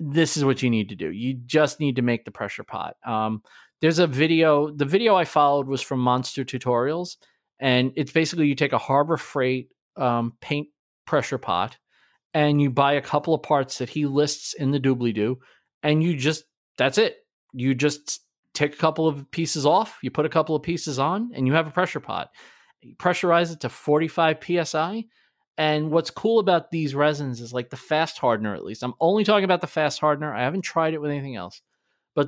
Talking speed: 210 wpm